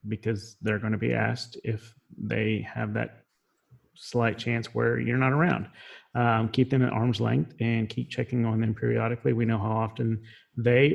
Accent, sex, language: American, male, English